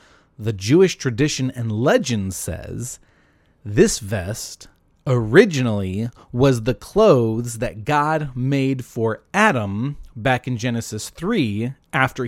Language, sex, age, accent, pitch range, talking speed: English, male, 30-49, American, 115-150 Hz, 110 wpm